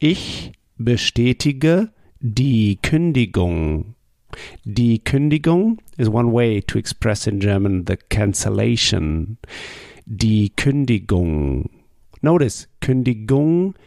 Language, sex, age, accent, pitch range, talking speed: German, male, 50-69, German, 100-130 Hz, 80 wpm